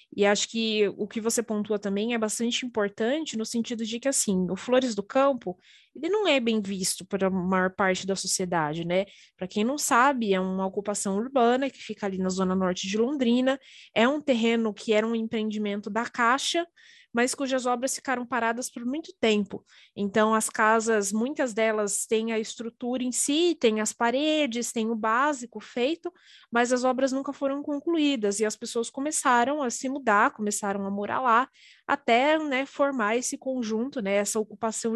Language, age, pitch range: Portuguese, 20-39, 205-255 Hz